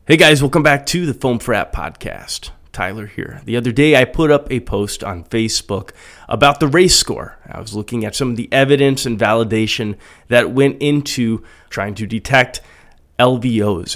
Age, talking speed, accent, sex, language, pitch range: 30-49, 180 wpm, American, male, English, 110-150 Hz